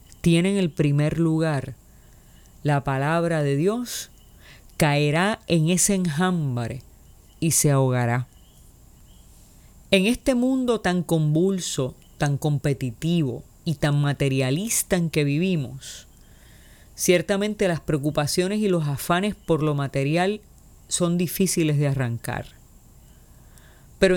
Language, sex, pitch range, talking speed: Spanish, female, 140-195 Hz, 105 wpm